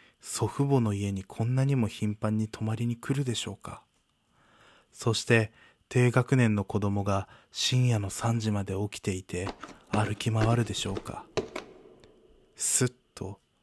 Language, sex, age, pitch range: Japanese, male, 20-39, 105-120 Hz